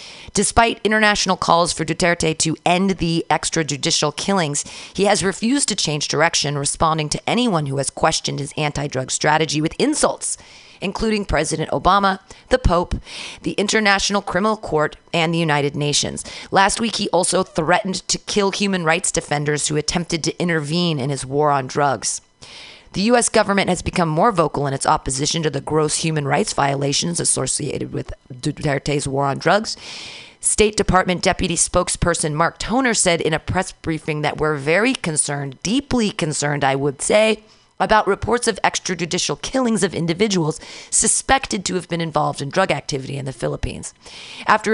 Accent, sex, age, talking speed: American, female, 40-59, 160 wpm